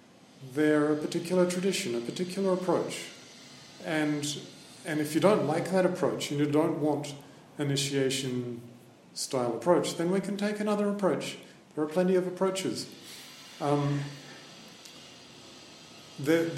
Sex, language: male, English